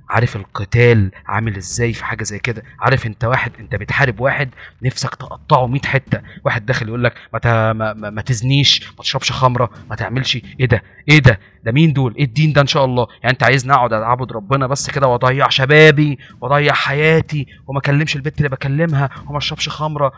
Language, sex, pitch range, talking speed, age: Arabic, male, 105-135 Hz, 185 wpm, 30-49